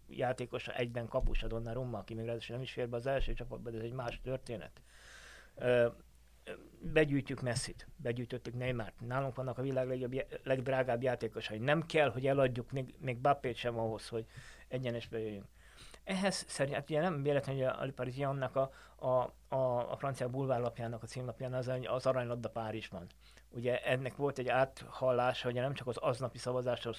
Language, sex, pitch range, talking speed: Hungarian, male, 115-130 Hz, 160 wpm